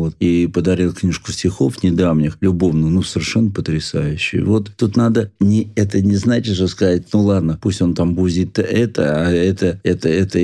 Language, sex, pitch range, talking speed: Russian, male, 90-110 Hz, 170 wpm